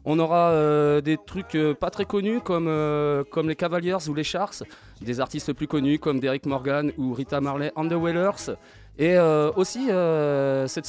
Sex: male